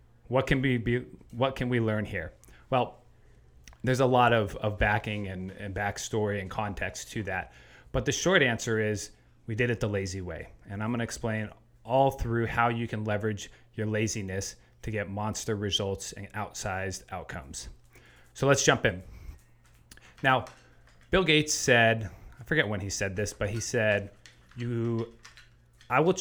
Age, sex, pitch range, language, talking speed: 30-49, male, 105-125 Hz, English, 170 wpm